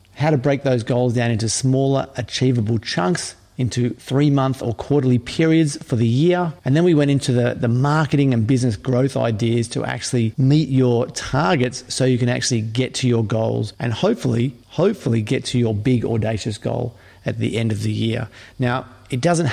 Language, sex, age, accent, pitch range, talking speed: English, male, 40-59, Australian, 120-145 Hz, 185 wpm